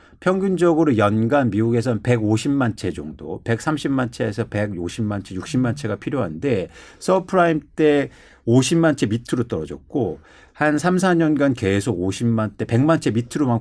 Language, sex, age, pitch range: Korean, male, 50-69, 110-155 Hz